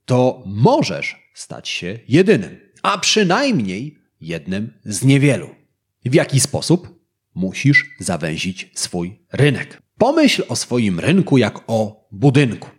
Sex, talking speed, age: male, 115 wpm, 30-49